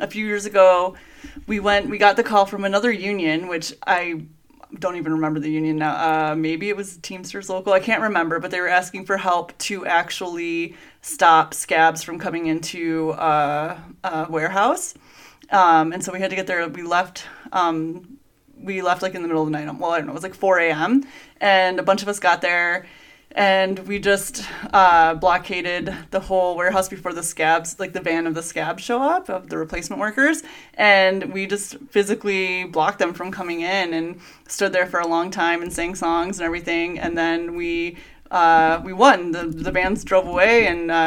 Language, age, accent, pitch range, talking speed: English, 20-39, American, 170-200 Hz, 200 wpm